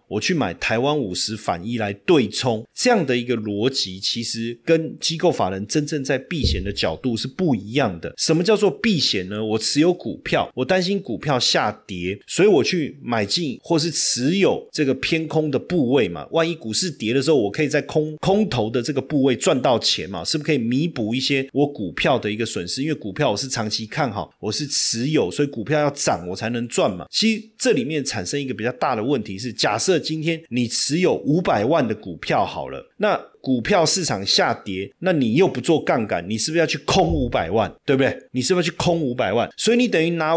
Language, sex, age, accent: Chinese, male, 30-49, native